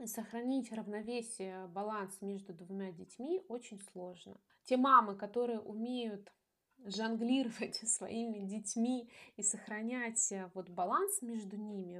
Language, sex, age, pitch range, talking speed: Russian, female, 20-39, 190-245 Hz, 100 wpm